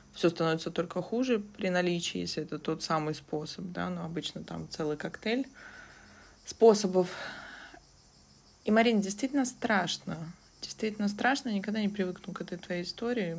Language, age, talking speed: Russian, 20-39, 145 wpm